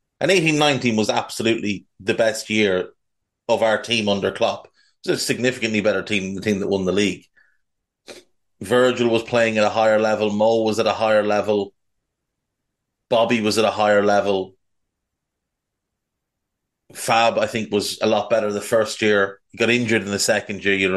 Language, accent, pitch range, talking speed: English, Irish, 100-115 Hz, 180 wpm